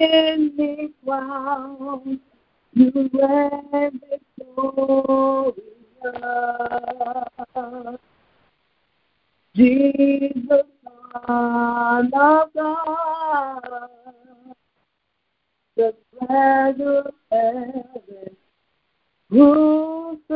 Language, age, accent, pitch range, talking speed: English, 40-59, American, 245-310 Hz, 40 wpm